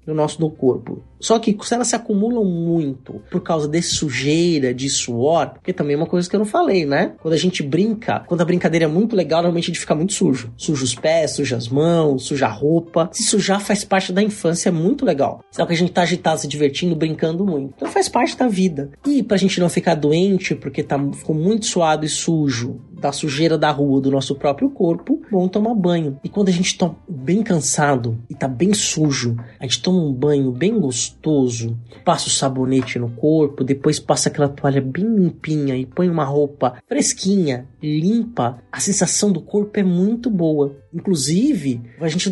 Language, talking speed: Portuguese, 205 wpm